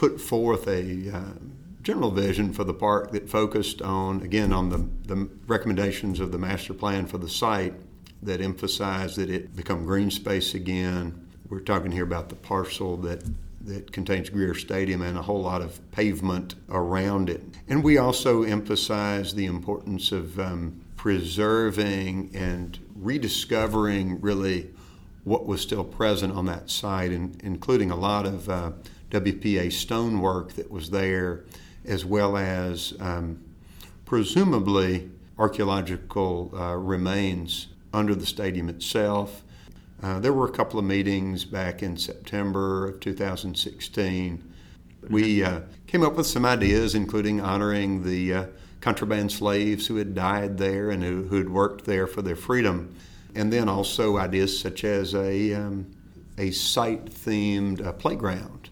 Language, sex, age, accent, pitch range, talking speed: English, male, 50-69, American, 90-105 Hz, 145 wpm